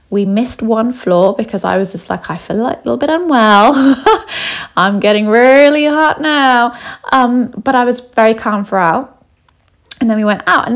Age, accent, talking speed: 20-39, British, 190 wpm